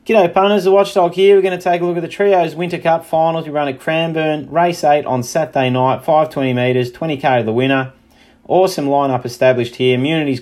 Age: 30-49